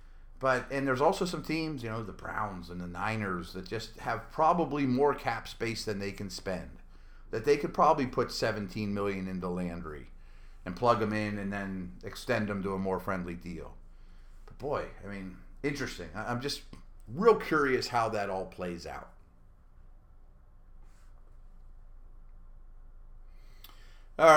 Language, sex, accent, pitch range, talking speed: English, male, American, 90-120 Hz, 150 wpm